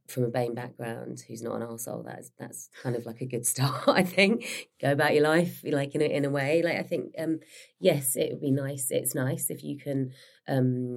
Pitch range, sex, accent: 120-140 Hz, female, British